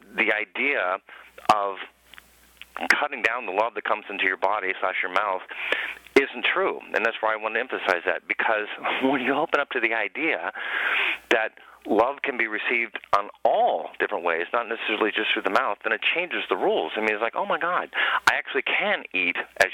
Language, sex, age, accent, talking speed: English, male, 40-59, American, 200 wpm